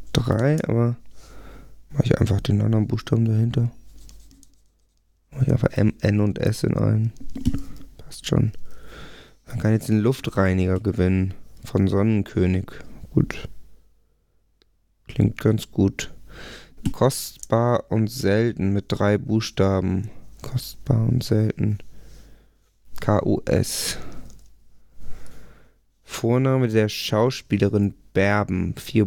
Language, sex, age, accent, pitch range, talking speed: German, male, 20-39, German, 100-120 Hz, 95 wpm